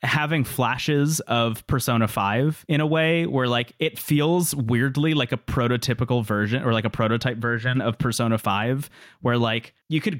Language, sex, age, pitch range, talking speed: English, male, 20-39, 115-145 Hz, 170 wpm